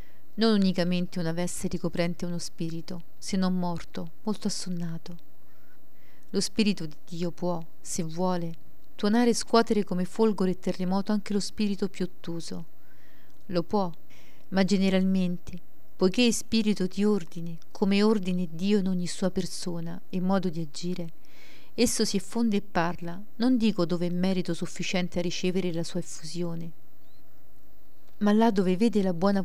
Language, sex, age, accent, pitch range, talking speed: Italian, female, 40-59, native, 175-200 Hz, 150 wpm